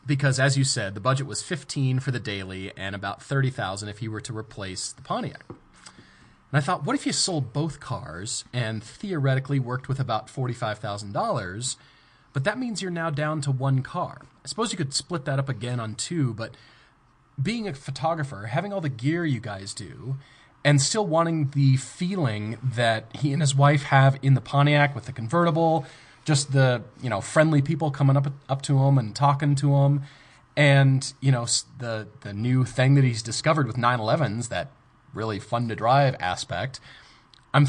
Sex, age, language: male, 30-49, English